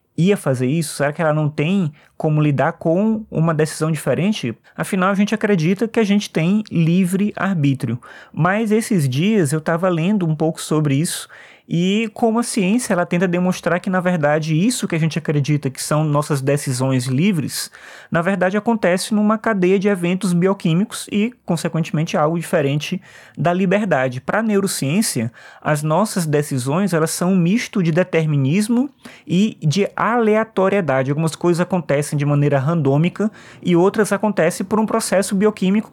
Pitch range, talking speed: 150-195 Hz, 155 wpm